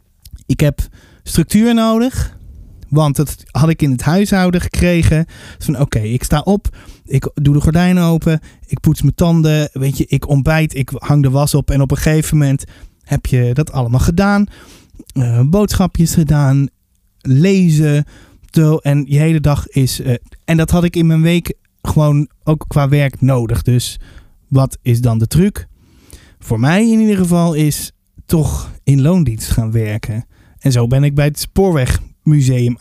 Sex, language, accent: male, Dutch, Dutch